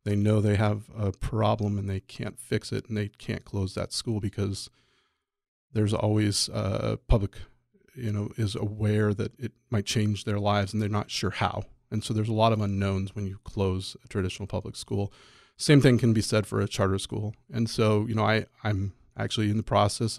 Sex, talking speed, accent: male, 205 wpm, American